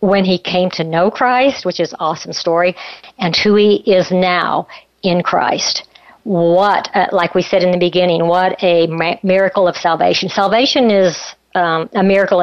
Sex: female